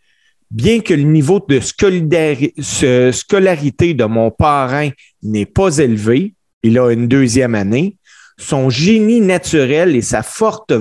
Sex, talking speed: male, 130 wpm